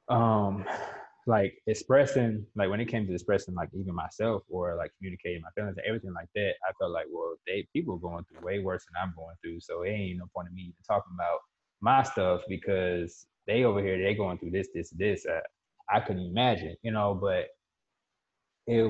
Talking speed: 210 wpm